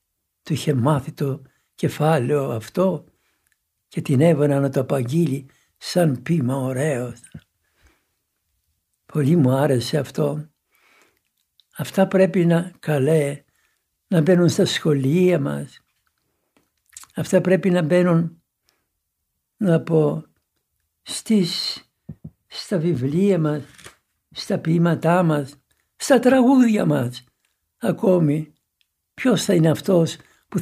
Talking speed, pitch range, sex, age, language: 95 wpm, 125-175 Hz, male, 60-79, Greek